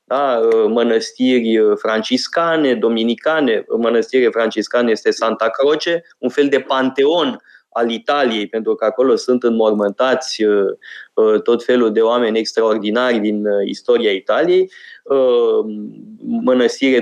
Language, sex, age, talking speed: Romanian, male, 20-39, 100 wpm